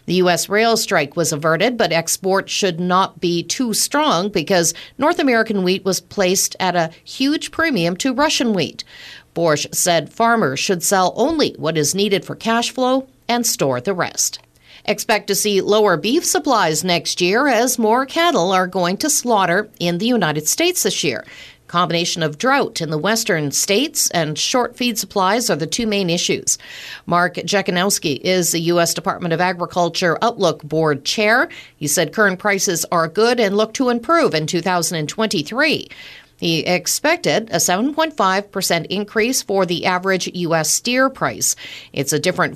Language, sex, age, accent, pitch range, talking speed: English, female, 50-69, American, 165-225 Hz, 165 wpm